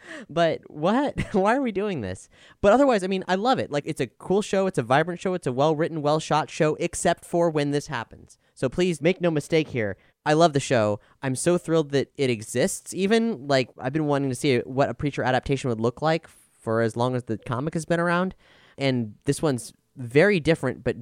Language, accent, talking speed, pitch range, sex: English, American, 225 wpm, 130-185 Hz, male